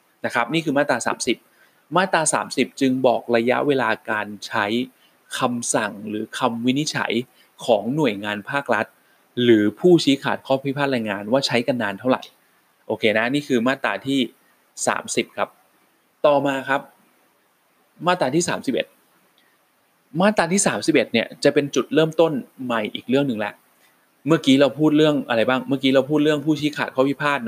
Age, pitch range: 20-39, 120-155 Hz